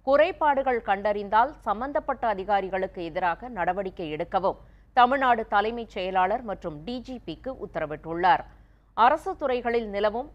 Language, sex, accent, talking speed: Tamil, female, native, 95 wpm